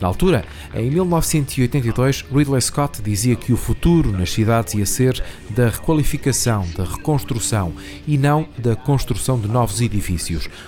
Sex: male